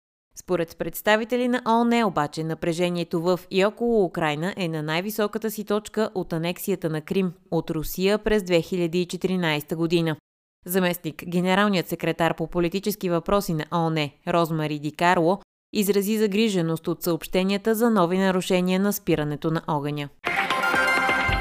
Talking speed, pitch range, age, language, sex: 125 wpm, 165-210 Hz, 20-39, Bulgarian, female